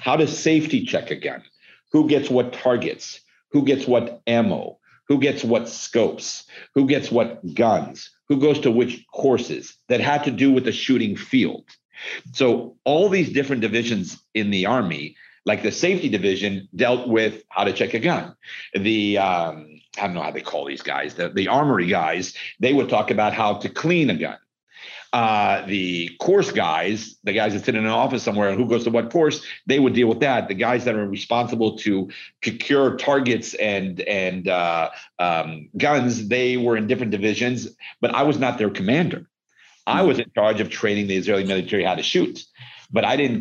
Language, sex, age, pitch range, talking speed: English, male, 50-69, 105-140 Hz, 190 wpm